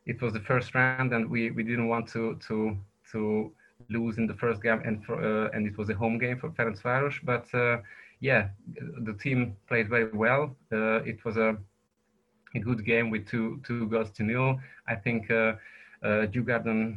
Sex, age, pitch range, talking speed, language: male, 20-39, 105-120 Hz, 195 wpm, English